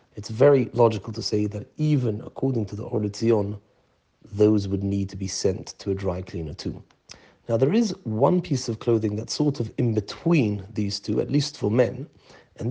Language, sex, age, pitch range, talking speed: English, male, 40-59, 105-130 Hz, 195 wpm